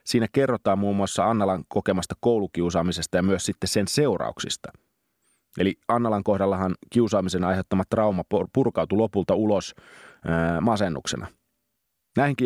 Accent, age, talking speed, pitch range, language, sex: native, 30-49, 110 wpm, 90-115 Hz, Finnish, male